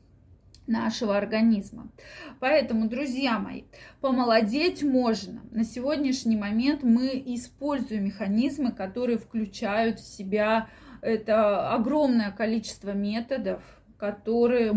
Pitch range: 200-235 Hz